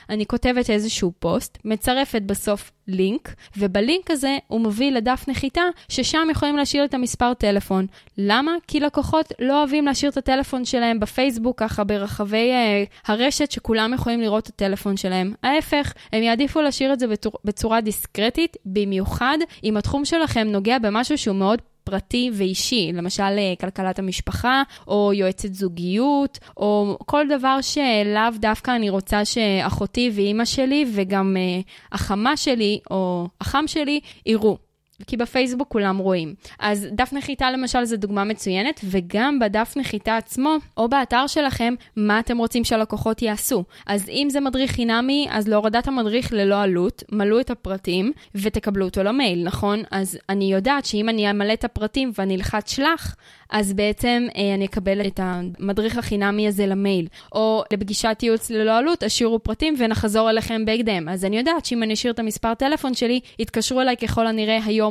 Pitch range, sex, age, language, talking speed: 200-255 Hz, female, 10-29, Hebrew, 140 wpm